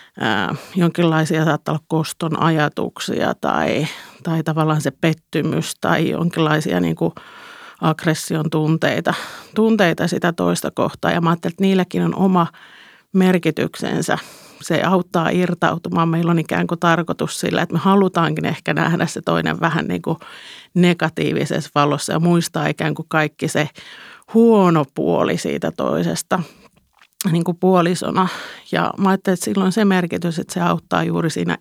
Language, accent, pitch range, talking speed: Finnish, native, 160-185 Hz, 130 wpm